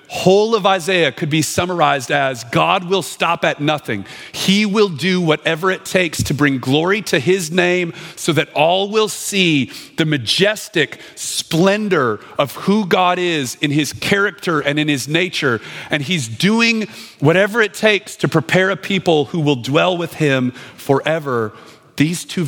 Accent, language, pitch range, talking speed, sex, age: American, English, 120-165 Hz, 165 wpm, male, 40-59